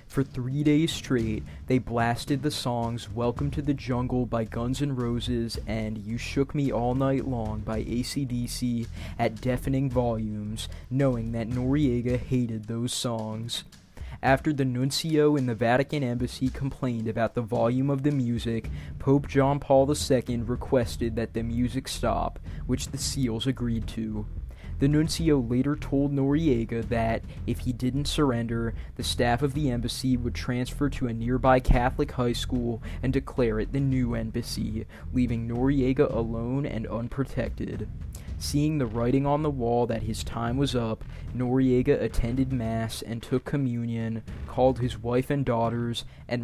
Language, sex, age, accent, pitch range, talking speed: English, male, 20-39, American, 115-135 Hz, 155 wpm